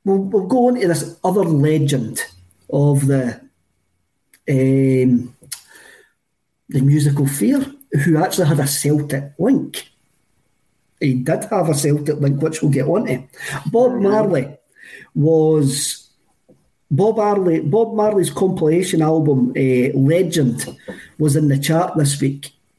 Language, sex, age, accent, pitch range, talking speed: English, male, 40-59, British, 140-180 Hz, 125 wpm